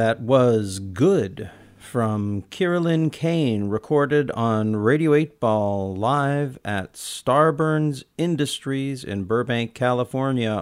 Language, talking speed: English, 100 wpm